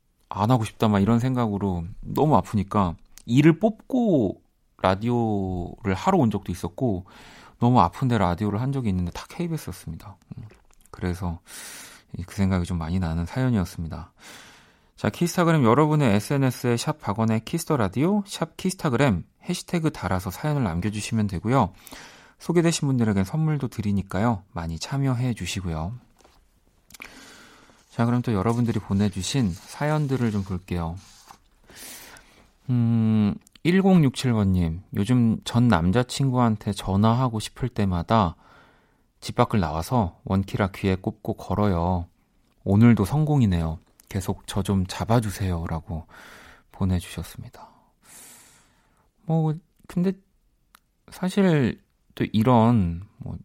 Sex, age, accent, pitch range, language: male, 40-59, native, 95-130 Hz, Korean